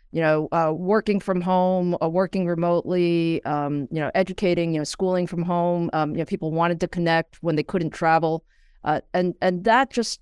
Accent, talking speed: American, 200 wpm